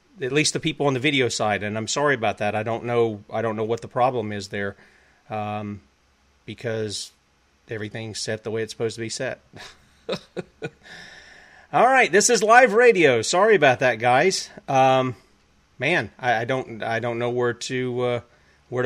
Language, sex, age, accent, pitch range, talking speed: English, male, 40-59, American, 110-145 Hz, 180 wpm